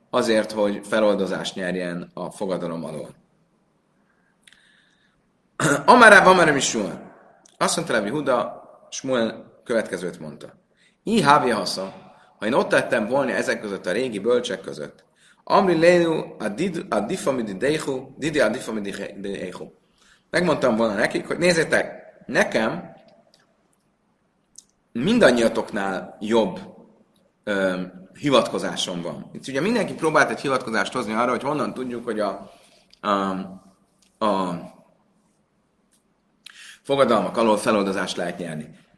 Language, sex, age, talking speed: Hungarian, male, 30-49, 95 wpm